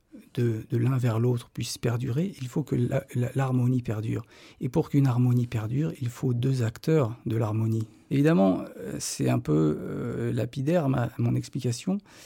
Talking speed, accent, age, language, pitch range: 165 wpm, French, 50-69, French, 120-150 Hz